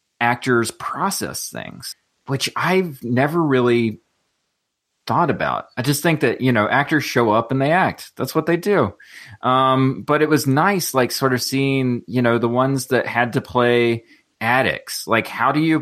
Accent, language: American, English